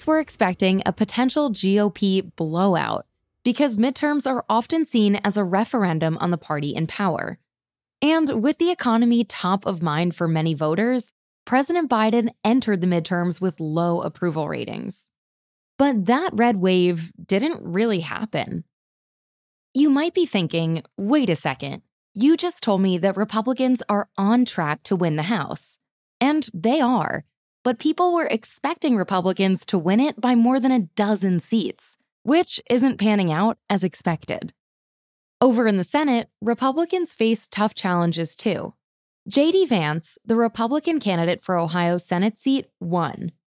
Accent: American